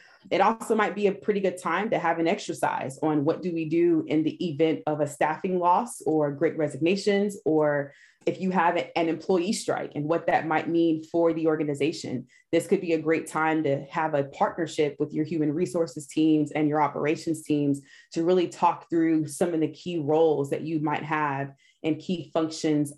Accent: American